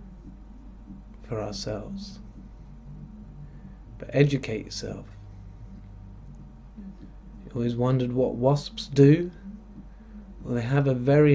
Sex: male